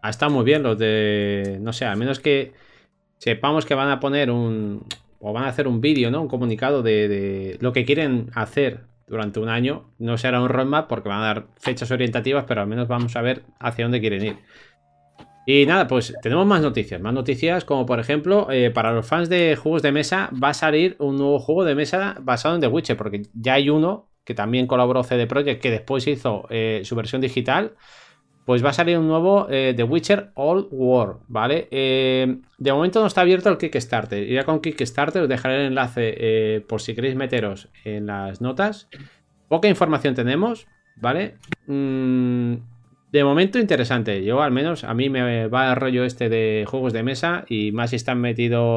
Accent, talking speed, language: Spanish, 200 wpm, Spanish